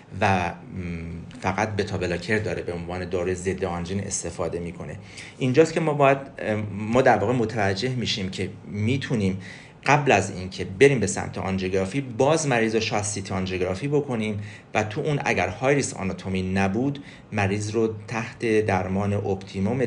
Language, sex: Persian, male